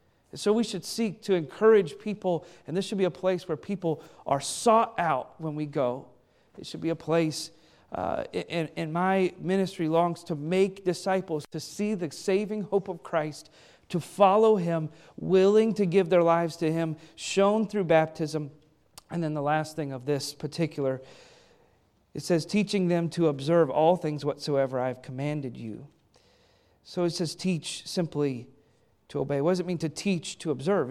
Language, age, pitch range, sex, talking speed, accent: English, 40-59, 160-205 Hz, male, 175 wpm, American